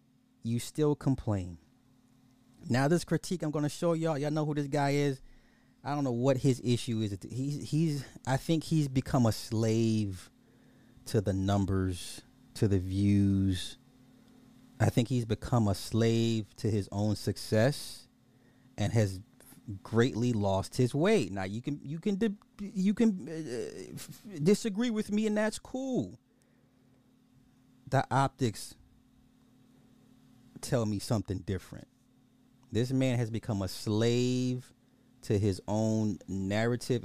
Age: 30-49